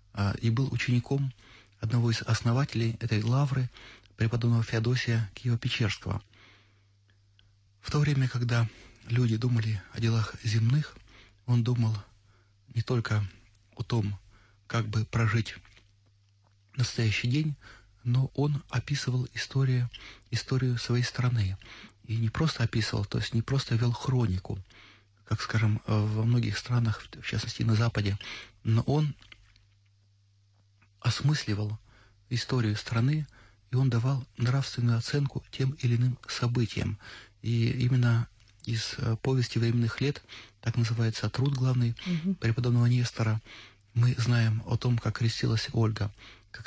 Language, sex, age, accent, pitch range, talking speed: Russian, male, 30-49, native, 105-125 Hz, 120 wpm